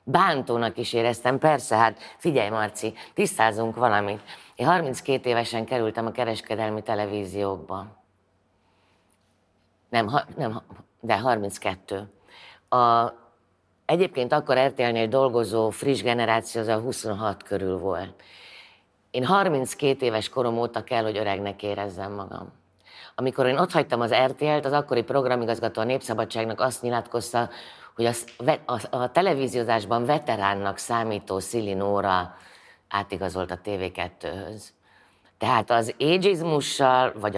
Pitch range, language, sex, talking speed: 100-125 Hz, Hungarian, female, 110 wpm